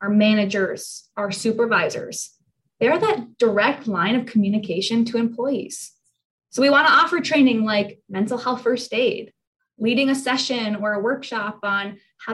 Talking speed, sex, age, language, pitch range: 150 wpm, female, 20-39, English, 215-260 Hz